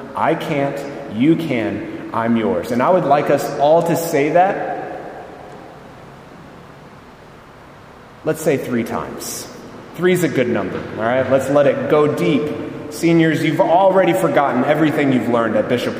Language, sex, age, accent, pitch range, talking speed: English, male, 30-49, American, 125-160 Hz, 150 wpm